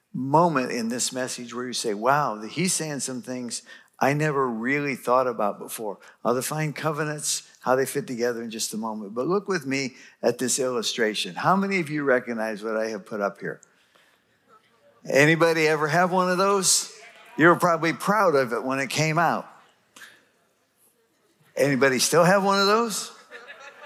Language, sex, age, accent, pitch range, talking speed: English, male, 60-79, American, 125-170 Hz, 170 wpm